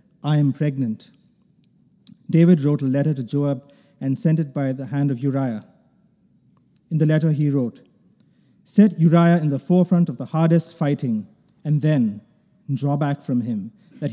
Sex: male